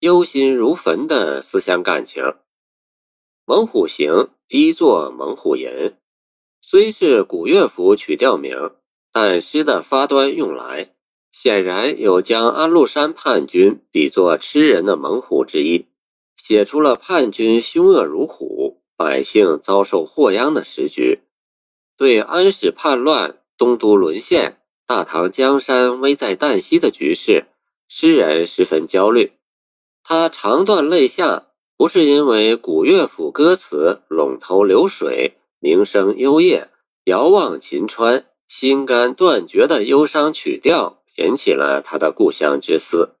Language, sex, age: Chinese, male, 50-69